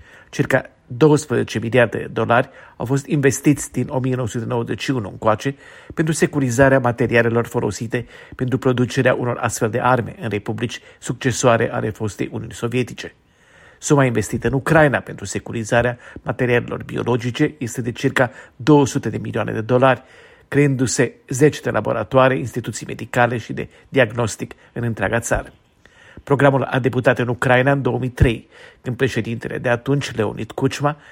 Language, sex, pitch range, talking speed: Romanian, male, 115-135 Hz, 135 wpm